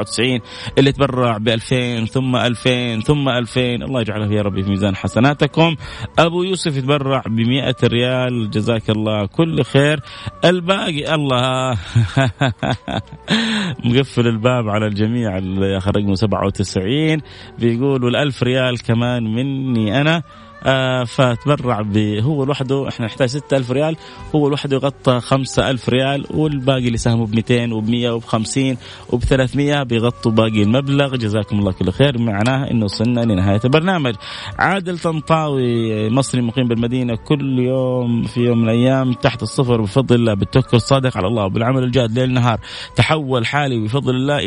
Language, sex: Arabic, male